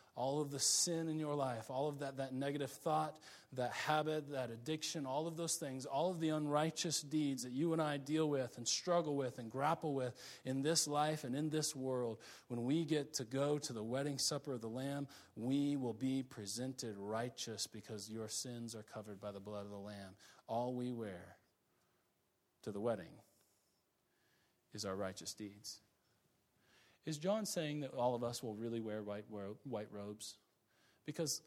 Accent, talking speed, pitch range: American, 185 wpm, 105-145 Hz